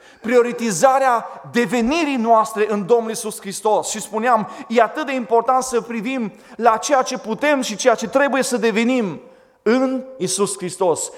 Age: 40-59